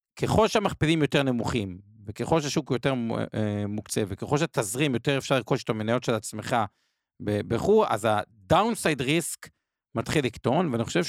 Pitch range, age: 115-155 Hz, 50-69